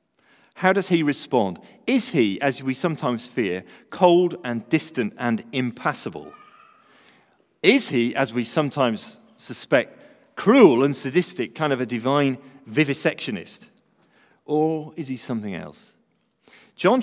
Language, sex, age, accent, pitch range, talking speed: English, male, 40-59, British, 130-200 Hz, 125 wpm